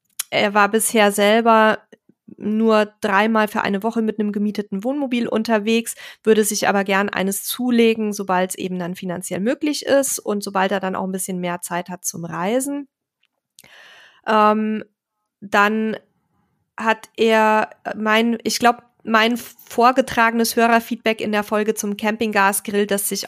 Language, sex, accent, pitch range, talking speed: German, female, German, 200-230 Hz, 145 wpm